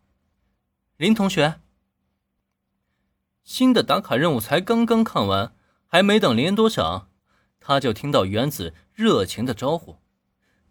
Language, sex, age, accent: Chinese, male, 20-39, native